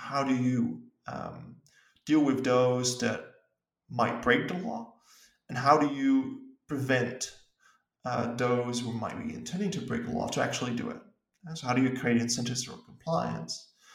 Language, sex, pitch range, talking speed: English, male, 120-160 Hz, 170 wpm